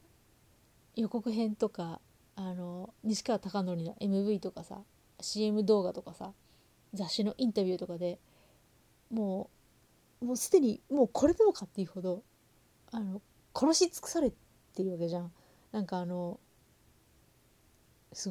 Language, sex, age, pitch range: Japanese, female, 30-49, 185-250 Hz